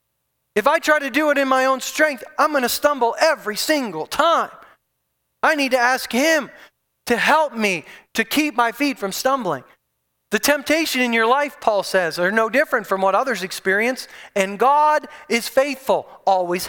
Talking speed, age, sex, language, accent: 175 wpm, 30-49, male, English, American